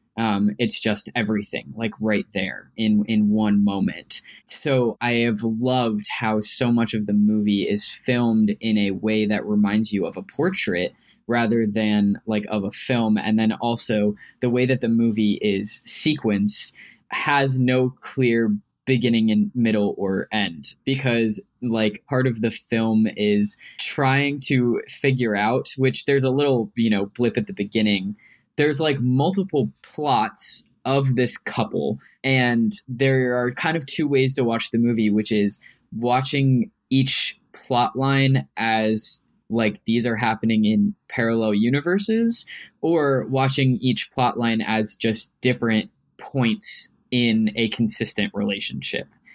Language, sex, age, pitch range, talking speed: English, male, 10-29, 105-130 Hz, 150 wpm